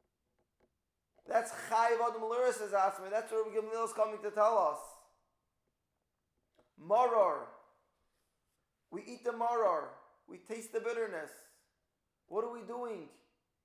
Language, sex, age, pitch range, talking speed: English, male, 20-39, 205-240 Hz, 115 wpm